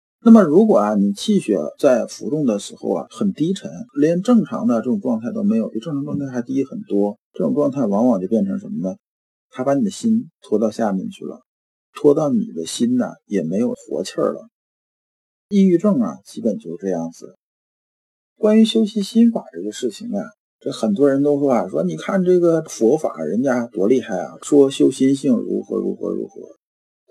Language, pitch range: Chinese, 135-225 Hz